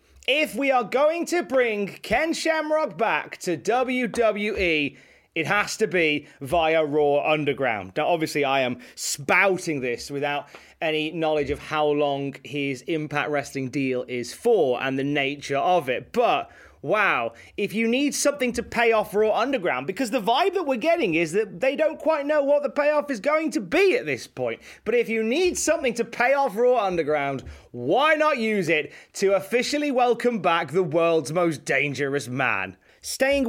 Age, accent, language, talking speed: 30-49, British, English, 175 wpm